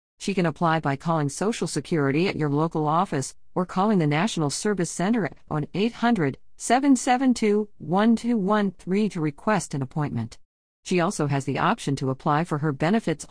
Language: English